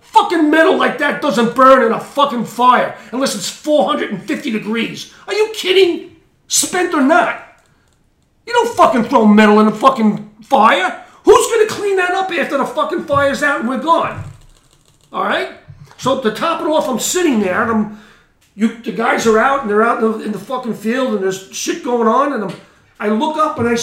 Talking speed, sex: 210 wpm, male